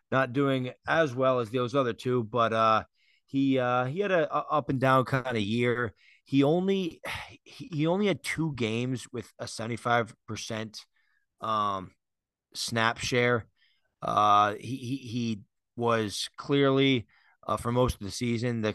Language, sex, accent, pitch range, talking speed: English, male, American, 110-130 Hz, 155 wpm